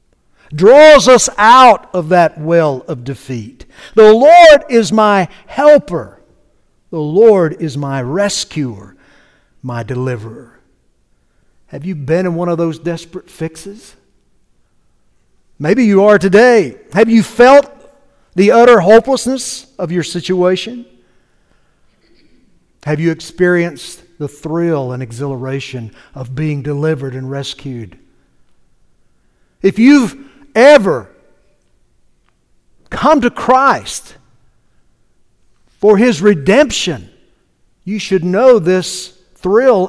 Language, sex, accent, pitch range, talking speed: English, male, American, 155-240 Hz, 100 wpm